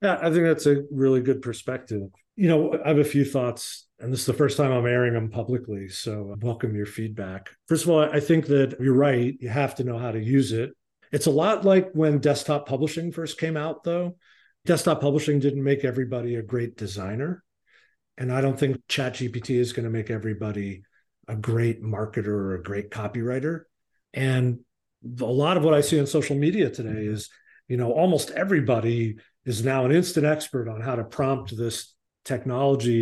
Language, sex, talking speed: English, male, 200 wpm